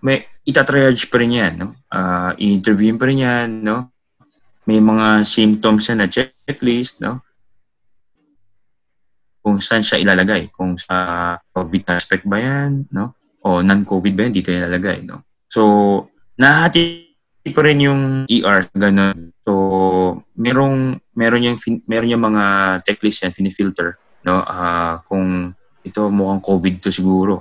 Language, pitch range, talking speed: Filipino, 95-115 Hz, 135 wpm